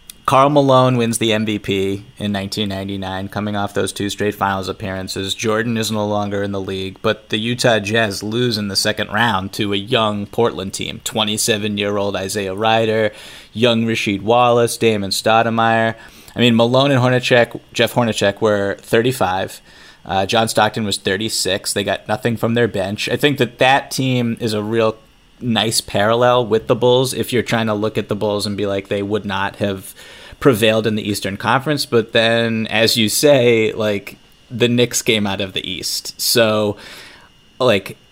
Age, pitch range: 30-49, 105-115 Hz